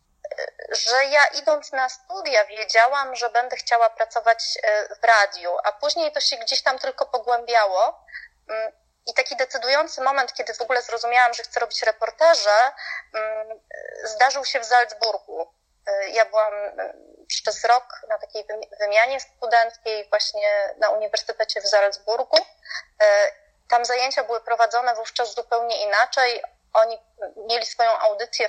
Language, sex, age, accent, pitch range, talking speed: Polish, female, 30-49, native, 220-300 Hz, 125 wpm